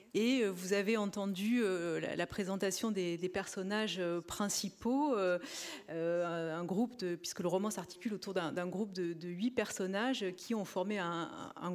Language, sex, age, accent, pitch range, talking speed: French, female, 30-49, French, 180-225 Hz, 135 wpm